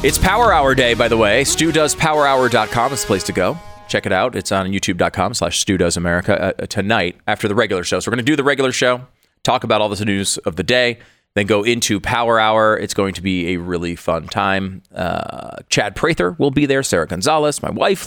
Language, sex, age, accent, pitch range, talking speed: English, male, 30-49, American, 95-125 Hz, 215 wpm